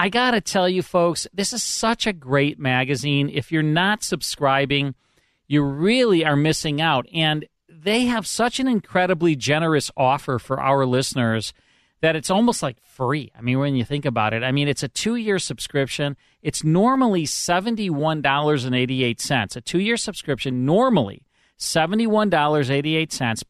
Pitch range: 135-185 Hz